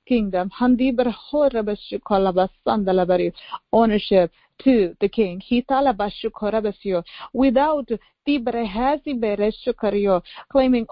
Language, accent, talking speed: English, Indian, 60 wpm